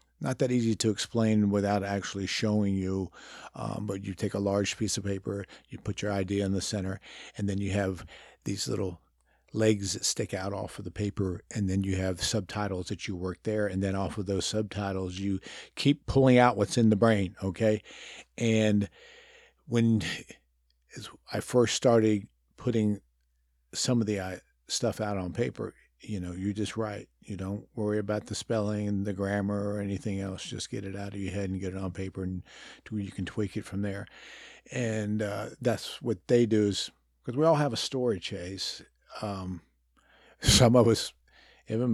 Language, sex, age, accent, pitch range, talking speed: English, male, 50-69, American, 95-115 Hz, 185 wpm